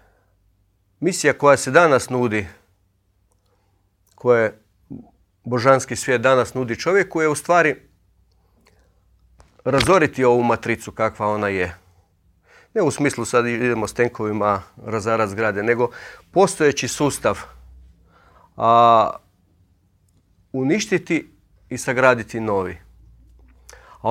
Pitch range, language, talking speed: 95-130 Hz, Croatian, 95 wpm